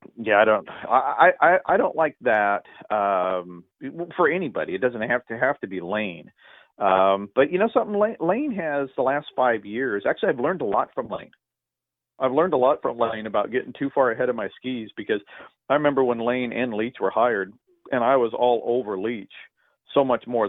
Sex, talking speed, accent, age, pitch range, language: male, 205 wpm, American, 40-59, 100-135 Hz, English